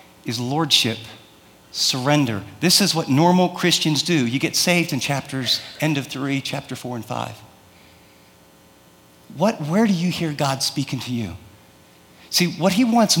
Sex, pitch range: male, 140-215 Hz